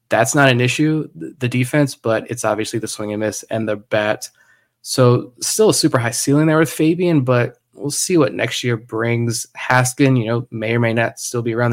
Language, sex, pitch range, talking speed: English, male, 115-130 Hz, 215 wpm